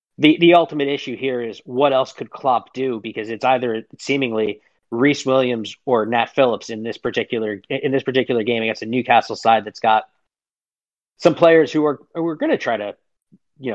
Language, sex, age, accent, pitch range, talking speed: English, male, 30-49, American, 110-135 Hz, 190 wpm